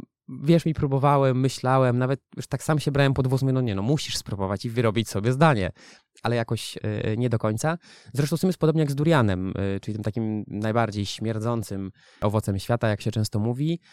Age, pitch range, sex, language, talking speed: 20-39, 115-150 Hz, male, Polish, 205 wpm